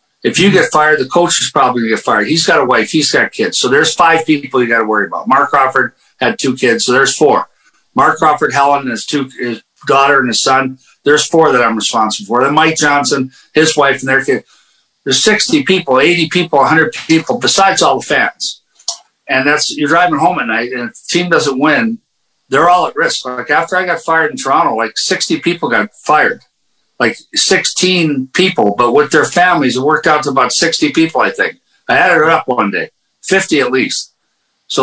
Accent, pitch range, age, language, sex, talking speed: American, 140-185 Hz, 50-69, French, male, 215 wpm